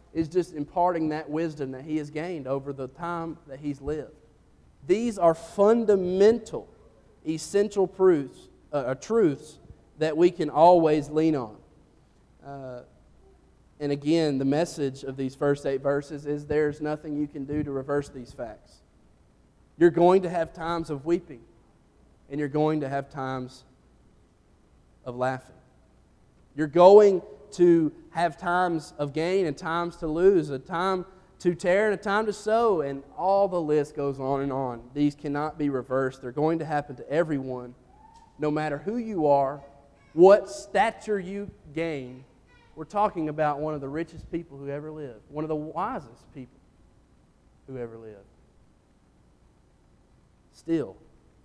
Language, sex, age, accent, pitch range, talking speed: English, male, 30-49, American, 135-170 Hz, 150 wpm